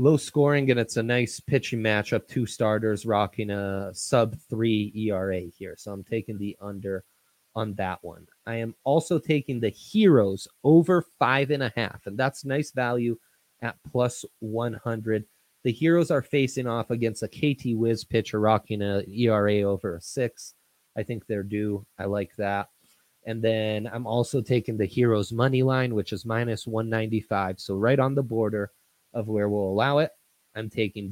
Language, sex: English, male